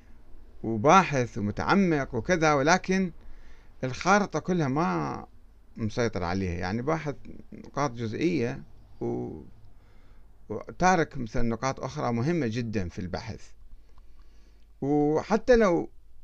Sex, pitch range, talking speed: male, 105-160 Hz, 85 wpm